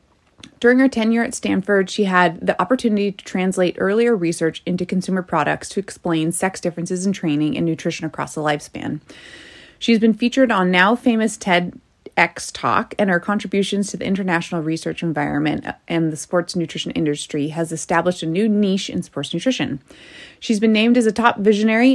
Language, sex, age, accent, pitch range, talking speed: English, female, 30-49, American, 175-215 Hz, 170 wpm